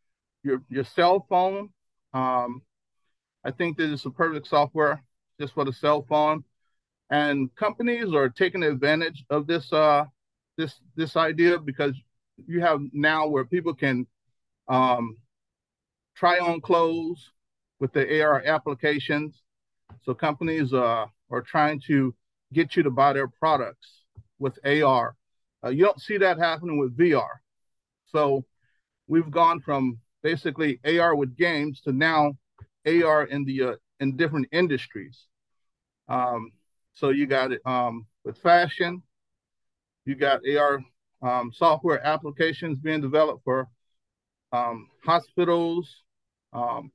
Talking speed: 130 wpm